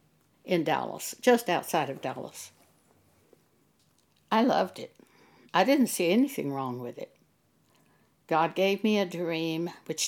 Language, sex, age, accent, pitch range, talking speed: English, female, 60-79, American, 170-250 Hz, 130 wpm